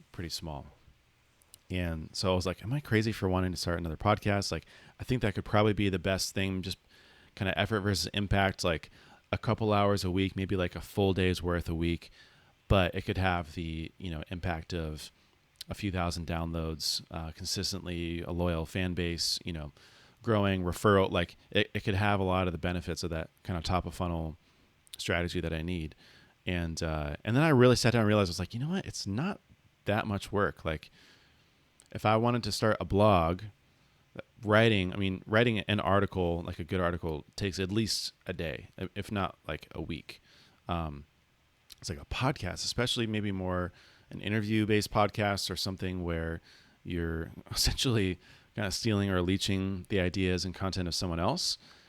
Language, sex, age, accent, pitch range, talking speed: English, male, 30-49, American, 85-105 Hz, 195 wpm